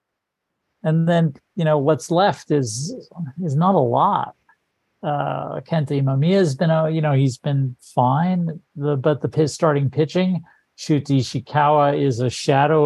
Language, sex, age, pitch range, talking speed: English, male, 50-69, 135-155 Hz, 155 wpm